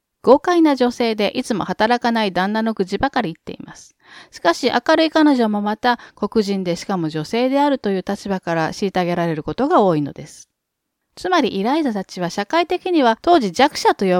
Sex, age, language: female, 40-59, Japanese